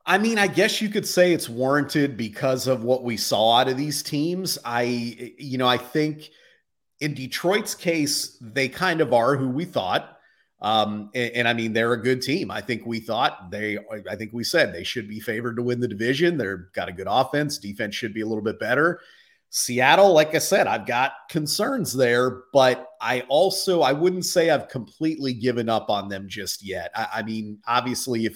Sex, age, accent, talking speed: male, 30-49, American, 210 wpm